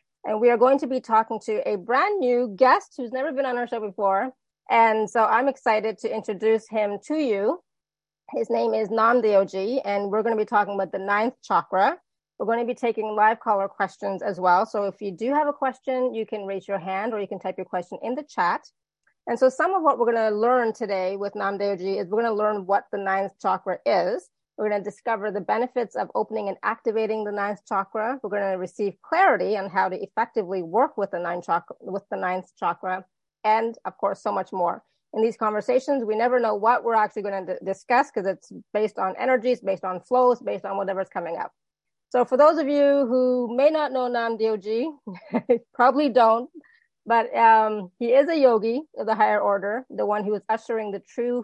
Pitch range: 200-245 Hz